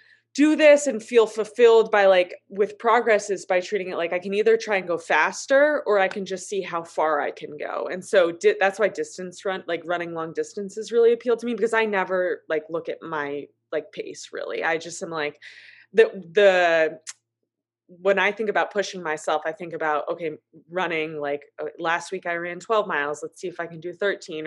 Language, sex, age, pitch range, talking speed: English, female, 20-39, 155-210 Hz, 210 wpm